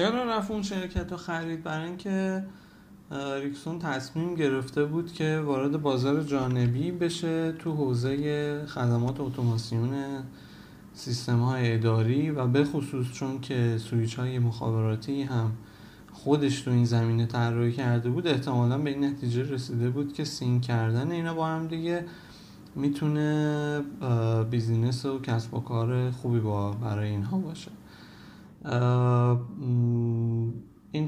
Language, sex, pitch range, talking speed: Persian, male, 120-155 Hz, 125 wpm